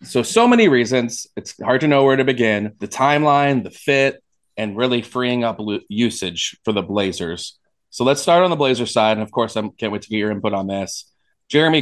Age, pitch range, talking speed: 20-39, 100-125 Hz, 225 wpm